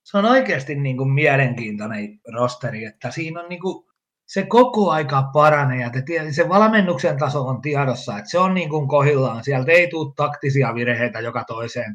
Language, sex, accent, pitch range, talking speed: Finnish, male, native, 120-150 Hz, 155 wpm